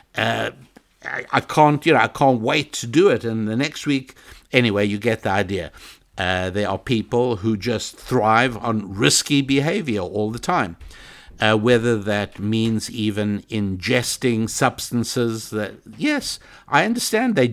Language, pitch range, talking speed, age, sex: English, 110-150 Hz, 160 wpm, 60-79, male